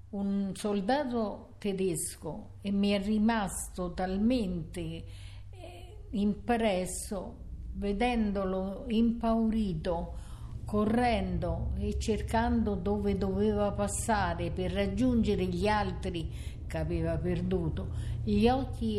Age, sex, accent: 50-69, female, native